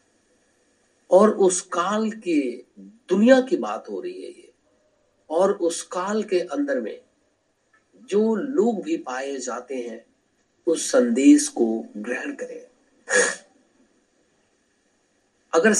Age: 50-69